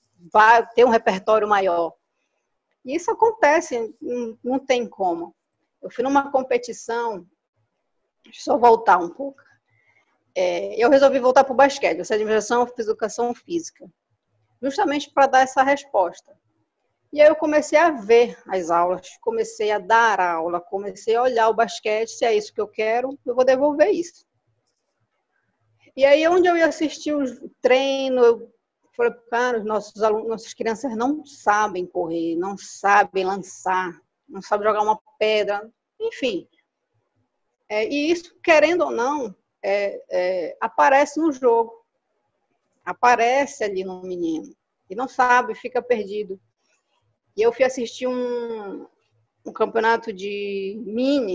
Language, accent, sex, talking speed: Portuguese, Brazilian, female, 135 wpm